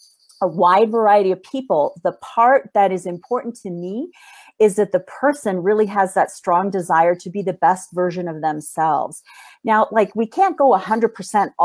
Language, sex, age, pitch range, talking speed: English, female, 40-59, 185-240 Hz, 175 wpm